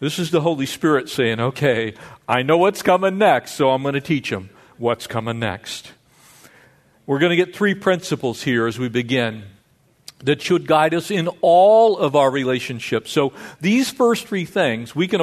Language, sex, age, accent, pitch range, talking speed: English, male, 50-69, American, 135-200 Hz, 185 wpm